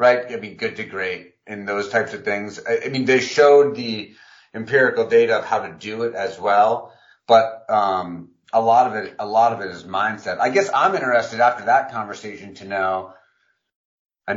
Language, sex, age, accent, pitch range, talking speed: English, male, 30-49, American, 110-145 Hz, 195 wpm